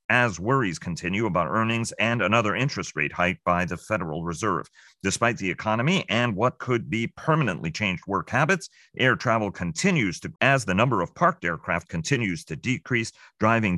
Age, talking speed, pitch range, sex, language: 40-59, 170 wpm, 90-120 Hz, male, English